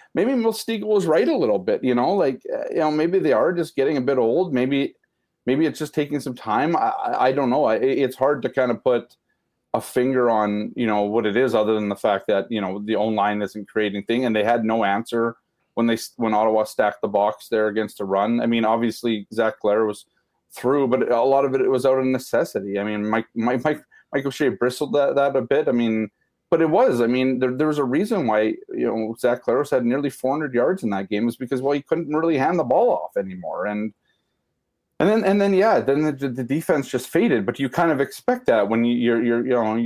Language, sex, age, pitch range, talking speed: English, male, 30-49, 110-140 Hz, 240 wpm